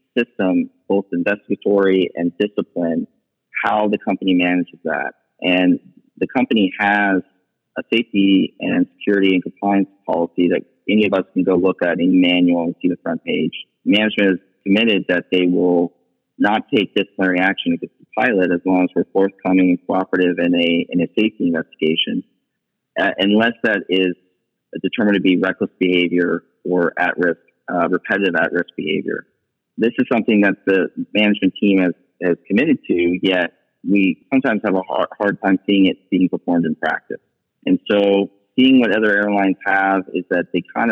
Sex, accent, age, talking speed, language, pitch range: male, American, 30-49, 170 wpm, English, 90-100 Hz